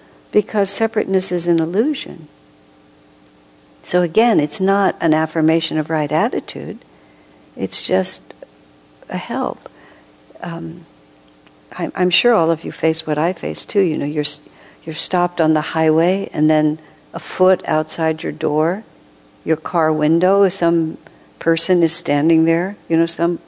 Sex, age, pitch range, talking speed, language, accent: female, 60-79, 145-180 Hz, 145 wpm, English, American